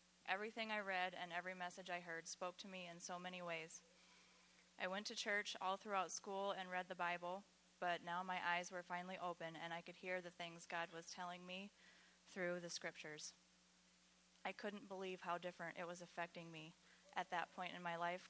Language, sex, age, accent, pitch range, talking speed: English, female, 20-39, American, 160-185 Hz, 200 wpm